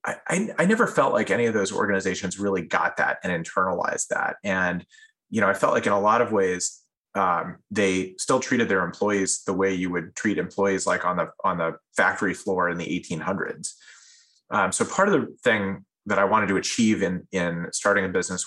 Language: English